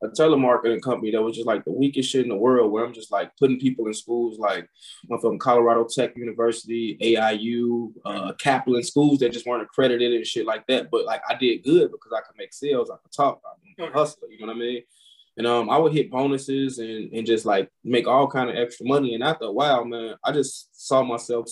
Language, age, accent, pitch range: English, 20-39, American, 115-145 Hz